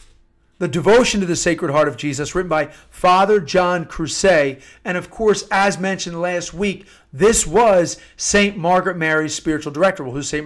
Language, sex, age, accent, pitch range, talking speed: English, male, 40-59, American, 150-195 Hz, 170 wpm